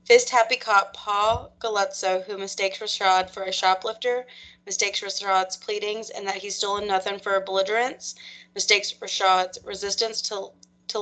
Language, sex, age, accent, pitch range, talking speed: English, female, 20-39, American, 180-205 Hz, 140 wpm